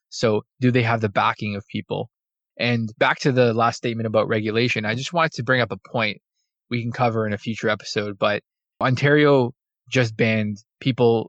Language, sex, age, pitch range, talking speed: English, male, 20-39, 105-120 Hz, 190 wpm